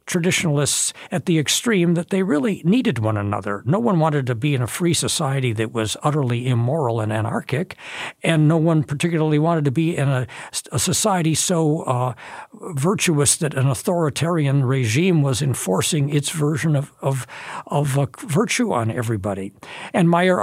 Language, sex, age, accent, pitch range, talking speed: English, male, 60-79, American, 130-170 Hz, 165 wpm